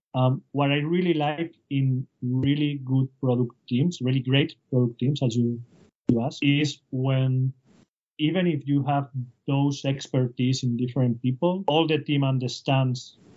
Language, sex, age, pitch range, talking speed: English, male, 30-49, 125-140 Hz, 150 wpm